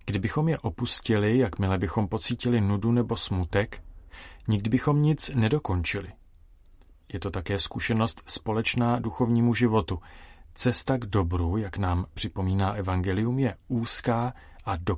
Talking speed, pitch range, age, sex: 125 wpm, 85-120 Hz, 40-59, male